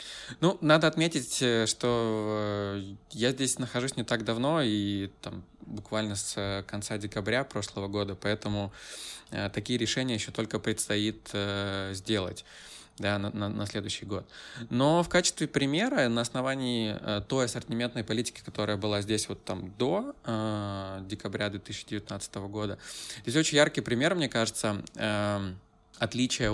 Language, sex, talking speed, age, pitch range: Russian, male, 130 wpm, 20-39, 100-120 Hz